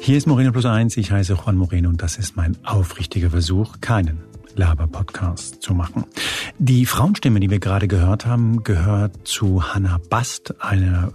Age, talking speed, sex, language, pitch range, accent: 50-69, 165 wpm, male, German, 90-115 Hz, German